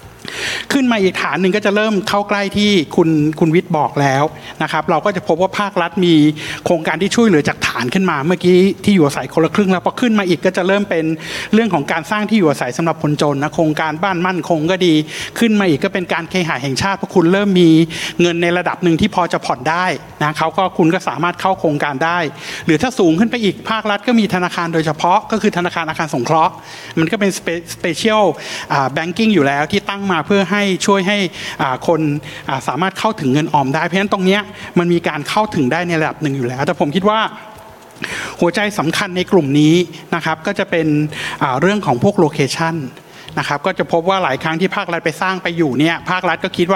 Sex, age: male, 60-79